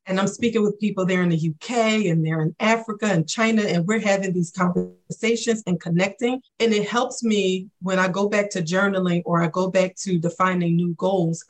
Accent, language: American, English